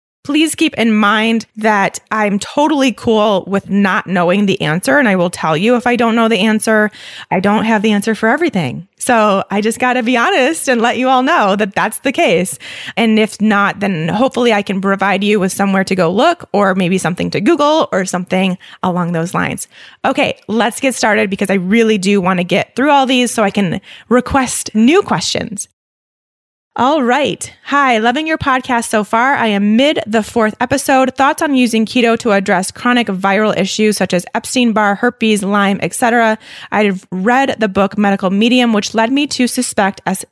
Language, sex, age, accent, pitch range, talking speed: English, female, 20-39, American, 195-245 Hz, 200 wpm